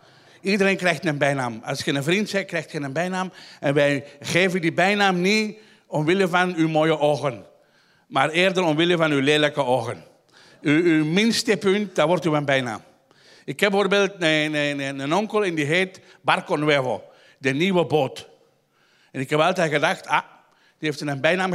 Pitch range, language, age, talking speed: 140-185 Hz, Dutch, 50-69, 180 wpm